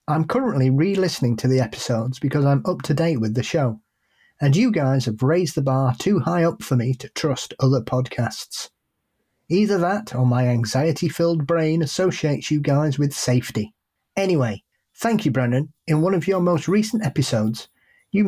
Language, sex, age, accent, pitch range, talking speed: English, male, 40-59, British, 130-170 Hz, 175 wpm